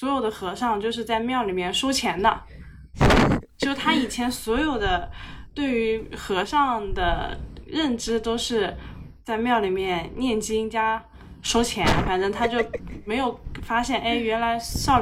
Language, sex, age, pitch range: Chinese, female, 10-29, 190-245 Hz